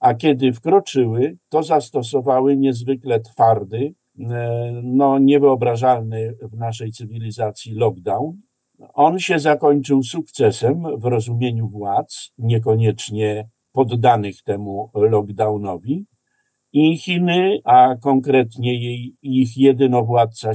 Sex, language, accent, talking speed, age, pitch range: male, Polish, native, 90 wpm, 50-69, 120-145 Hz